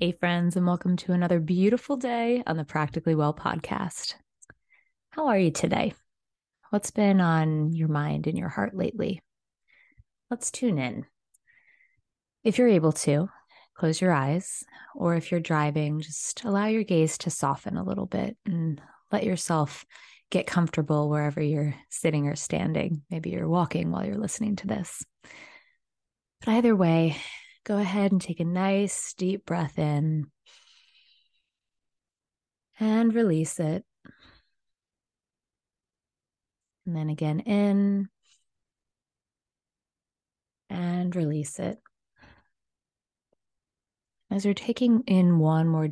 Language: English